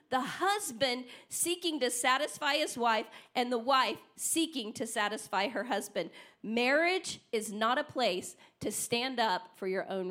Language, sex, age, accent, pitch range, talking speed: English, female, 40-59, American, 245-320 Hz, 155 wpm